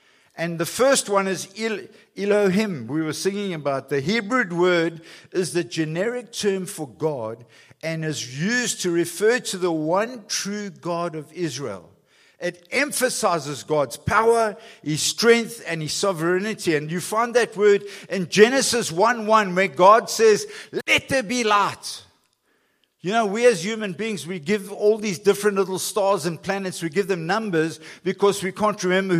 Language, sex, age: English, male, 50-69